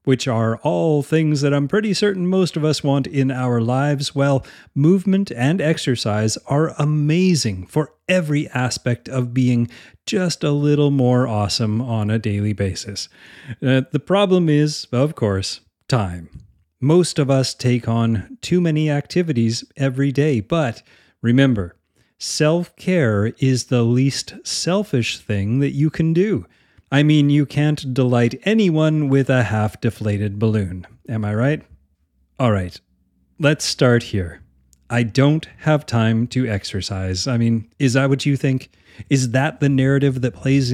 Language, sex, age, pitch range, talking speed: English, male, 30-49, 110-150 Hz, 145 wpm